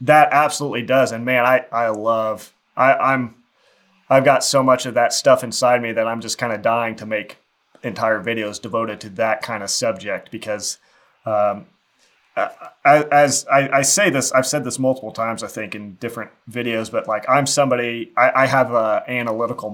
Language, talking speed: English, 190 wpm